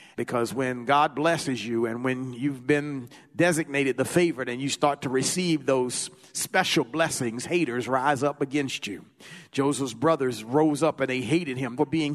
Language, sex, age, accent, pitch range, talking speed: English, male, 50-69, American, 130-165 Hz, 175 wpm